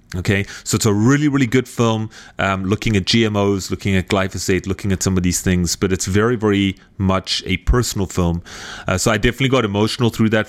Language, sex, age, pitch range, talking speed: English, male, 30-49, 95-115 Hz, 210 wpm